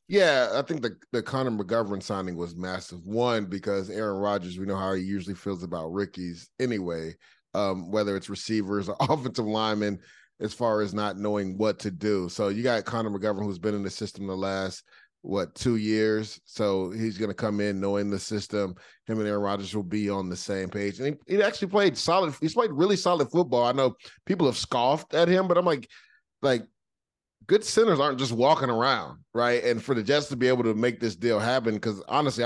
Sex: male